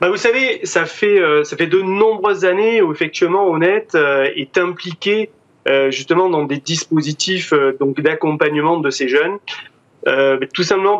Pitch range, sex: 150-205 Hz, male